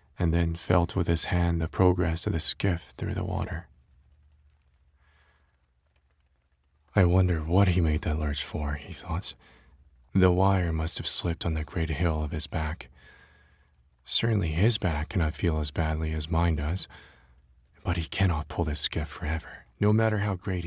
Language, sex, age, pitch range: Korean, male, 20-39, 75-90 Hz